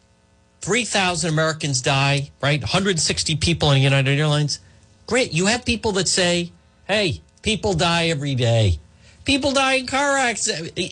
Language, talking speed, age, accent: English, 135 wpm, 40-59, American